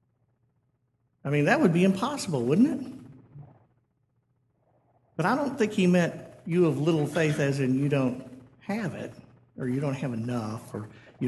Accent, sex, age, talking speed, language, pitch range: American, male, 50-69, 165 wpm, English, 125-160 Hz